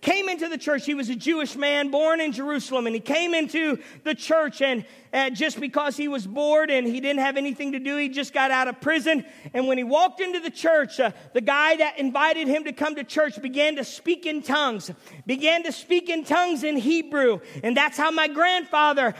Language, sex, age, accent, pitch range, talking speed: English, male, 40-59, American, 285-365 Hz, 220 wpm